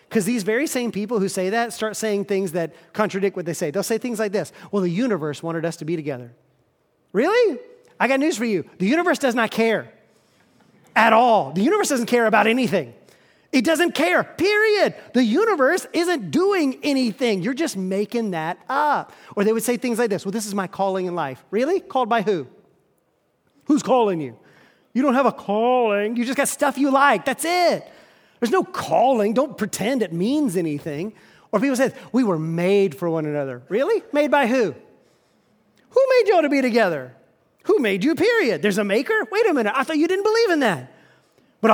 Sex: male